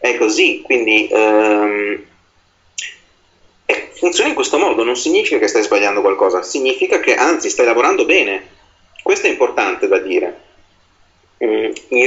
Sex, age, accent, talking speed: male, 30-49, native, 130 wpm